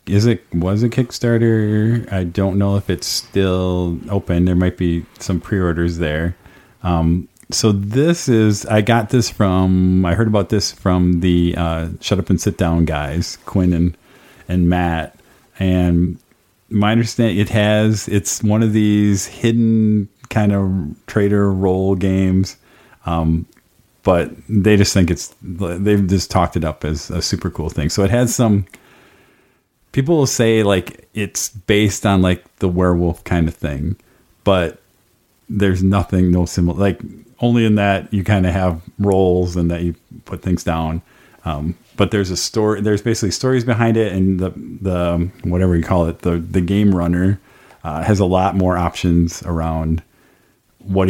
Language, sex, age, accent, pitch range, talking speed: English, male, 40-59, American, 85-105 Hz, 165 wpm